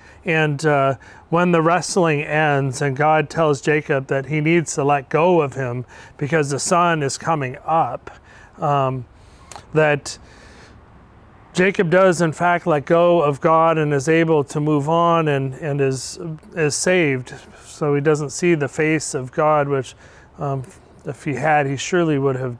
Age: 30-49